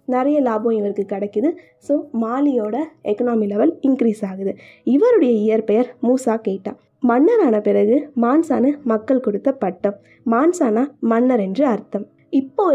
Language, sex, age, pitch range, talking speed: Tamil, female, 20-39, 220-280 Hz, 120 wpm